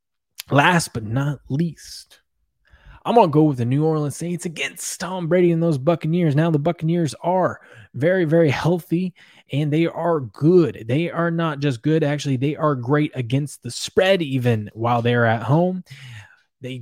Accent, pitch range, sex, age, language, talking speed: American, 120-165 Hz, male, 20-39, English, 170 wpm